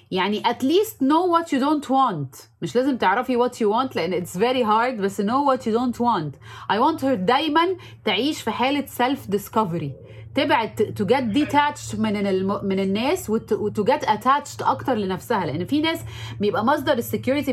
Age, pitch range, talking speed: 30-49, 205-275 Hz, 170 wpm